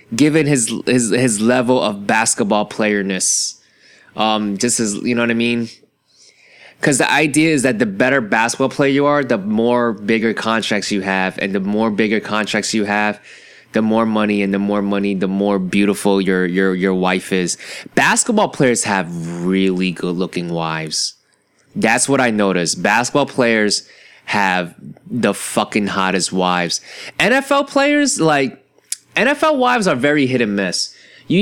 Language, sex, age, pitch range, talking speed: English, male, 20-39, 100-130 Hz, 160 wpm